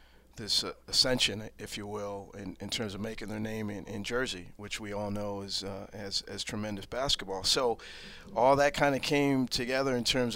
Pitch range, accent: 105-120 Hz, American